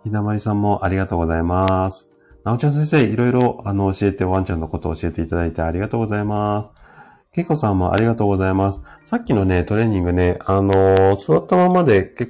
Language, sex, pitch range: Japanese, male, 95-125 Hz